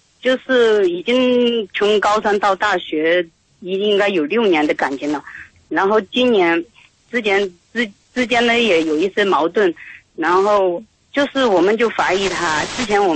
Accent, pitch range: native, 185-235 Hz